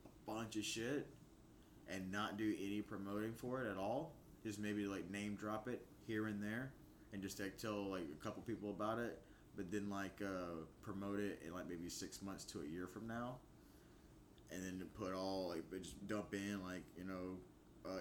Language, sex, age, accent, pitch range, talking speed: English, male, 20-39, American, 90-105 Hz, 205 wpm